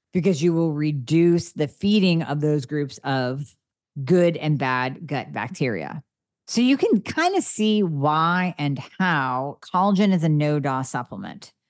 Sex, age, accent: female, 40-59, American